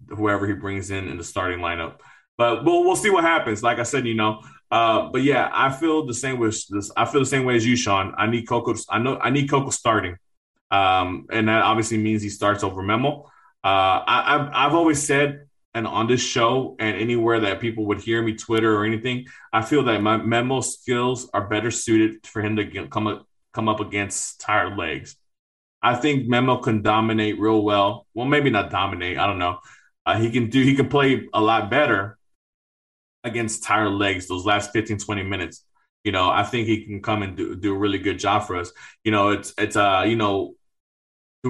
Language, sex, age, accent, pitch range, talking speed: English, male, 20-39, American, 100-120 Hz, 215 wpm